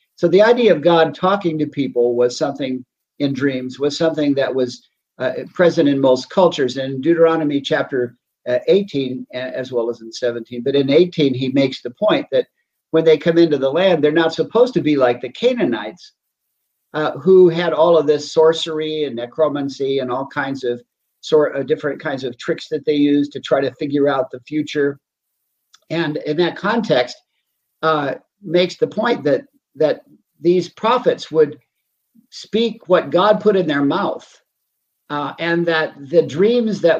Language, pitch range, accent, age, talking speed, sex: English, 135-180 Hz, American, 50-69, 175 wpm, male